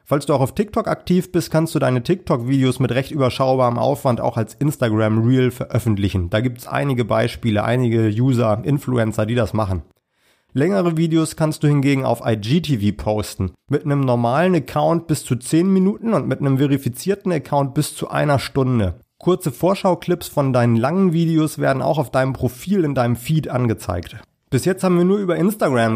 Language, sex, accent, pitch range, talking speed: German, male, German, 115-155 Hz, 180 wpm